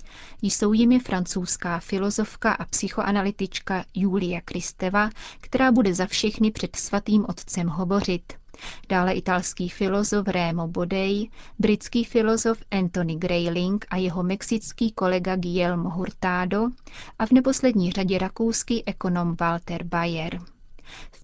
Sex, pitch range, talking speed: female, 180-210 Hz, 115 wpm